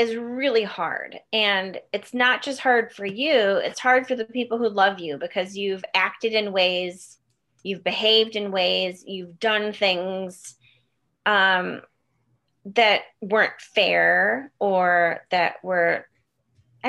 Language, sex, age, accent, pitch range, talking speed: English, female, 30-49, American, 175-230 Hz, 130 wpm